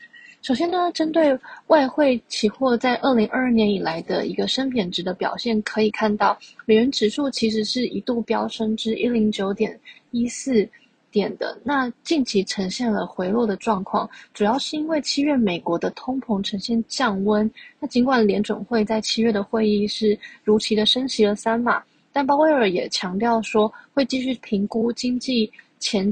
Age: 20-39